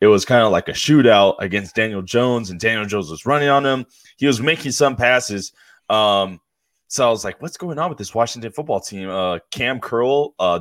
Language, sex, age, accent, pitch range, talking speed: English, male, 10-29, American, 95-125 Hz, 220 wpm